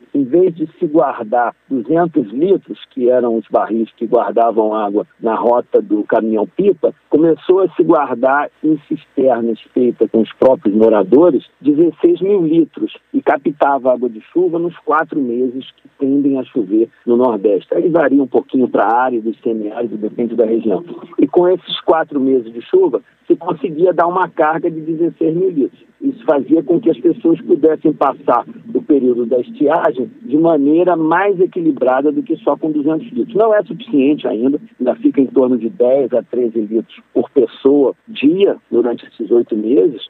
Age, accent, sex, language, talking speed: 50-69, Brazilian, male, Portuguese, 170 wpm